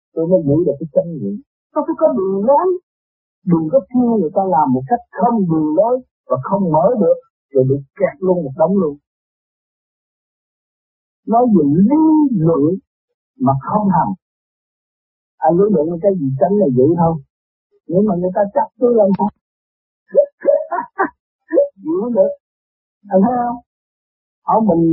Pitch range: 165-250 Hz